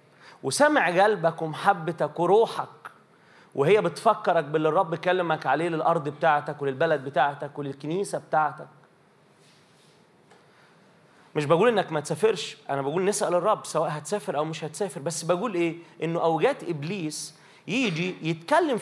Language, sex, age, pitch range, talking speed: Arabic, male, 30-49, 150-195 Hz, 120 wpm